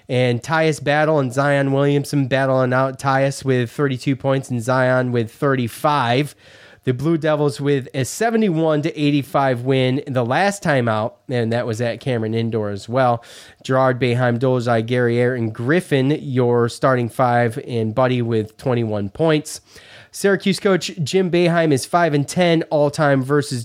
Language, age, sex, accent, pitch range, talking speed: English, 20-39, male, American, 120-145 Hz, 150 wpm